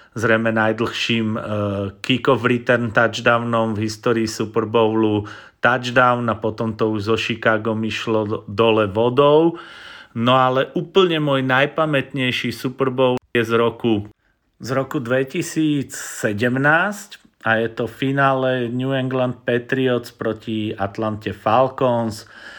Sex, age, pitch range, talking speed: male, 40-59, 115-130 Hz, 110 wpm